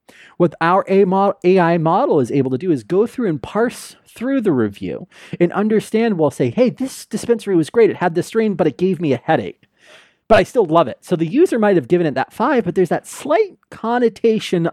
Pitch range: 150-210 Hz